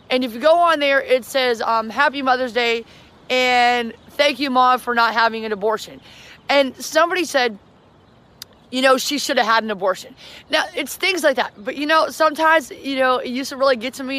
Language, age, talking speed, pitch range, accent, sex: English, 30-49, 210 wpm, 235-290 Hz, American, female